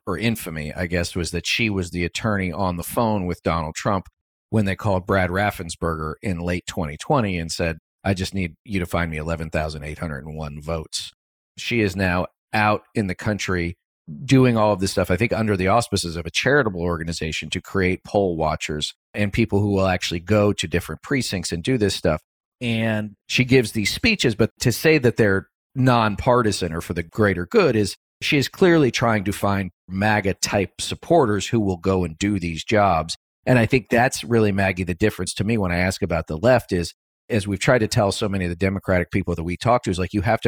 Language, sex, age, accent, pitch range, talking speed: English, male, 40-59, American, 90-115 Hz, 210 wpm